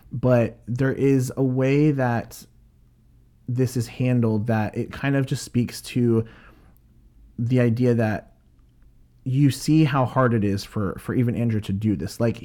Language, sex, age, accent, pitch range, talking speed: English, male, 30-49, American, 110-130 Hz, 160 wpm